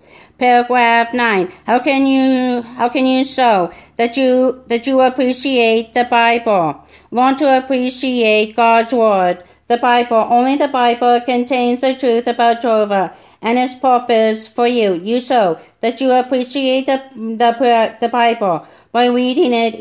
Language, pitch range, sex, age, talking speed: English, 210-245 Hz, female, 50-69, 145 wpm